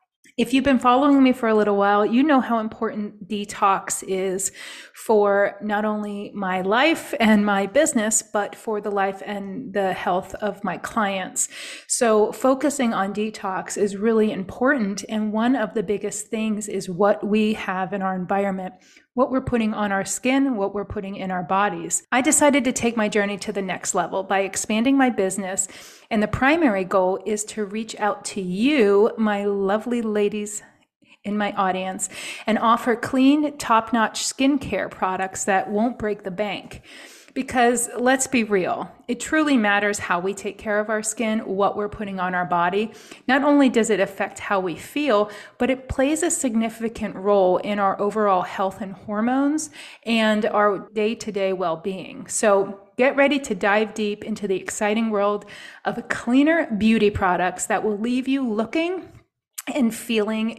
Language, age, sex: English, 30-49, female